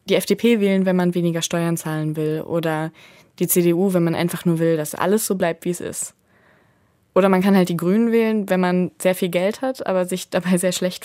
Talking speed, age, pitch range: 230 wpm, 20-39, 165-195 Hz